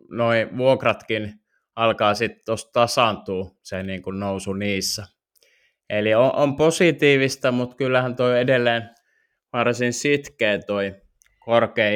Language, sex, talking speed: Finnish, male, 105 wpm